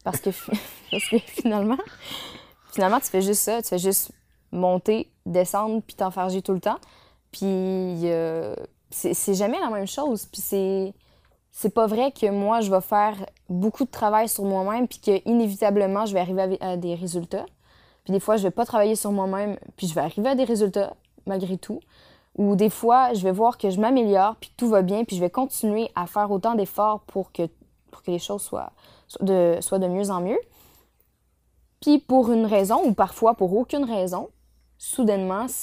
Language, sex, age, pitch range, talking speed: French, female, 20-39, 185-215 Hz, 195 wpm